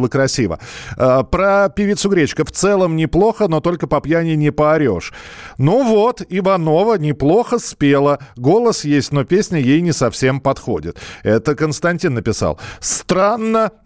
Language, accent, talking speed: Russian, native, 130 wpm